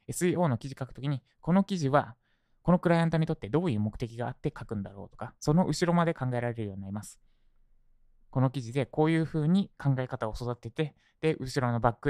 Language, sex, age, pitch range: Japanese, male, 20-39, 105-145 Hz